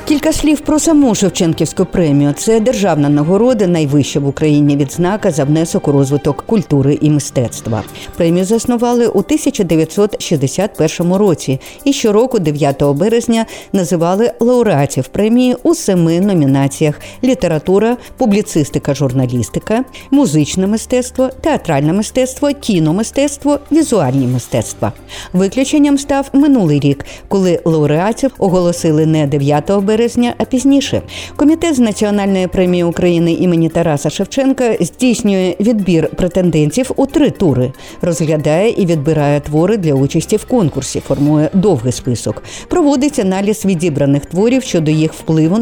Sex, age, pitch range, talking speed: female, 50-69, 150-235 Hz, 120 wpm